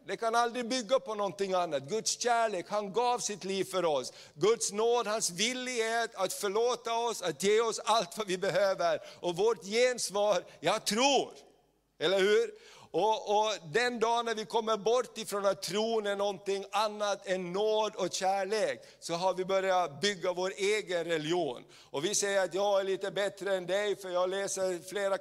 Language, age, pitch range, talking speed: Swedish, 50-69, 185-230 Hz, 180 wpm